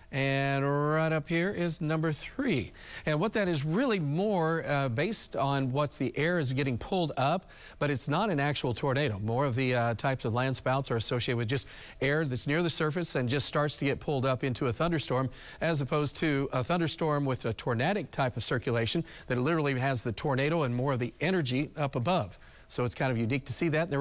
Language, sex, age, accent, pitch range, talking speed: English, male, 40-59, American, 125-150 Hz, 220 wpm